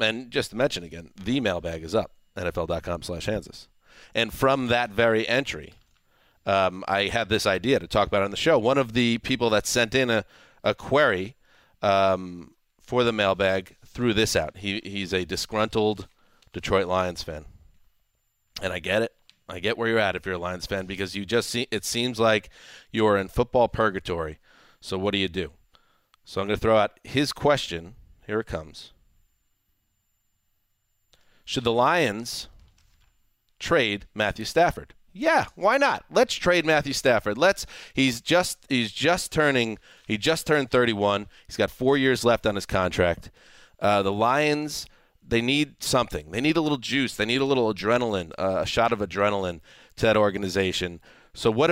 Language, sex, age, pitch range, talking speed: English, male, 30-49, 95-125 Hz, 175 wpm